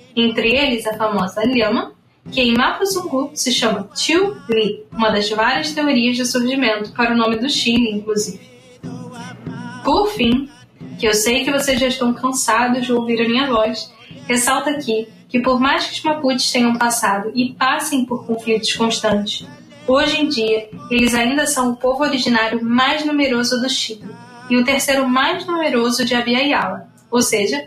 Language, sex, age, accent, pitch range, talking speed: Portuguese, female, 10-29, Brazilian, 225-265 Hz, 165 wpm